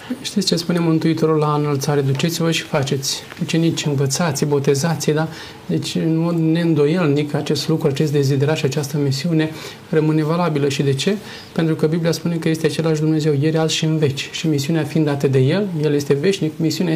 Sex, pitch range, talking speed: male, 150-165 Hz, 190 wpm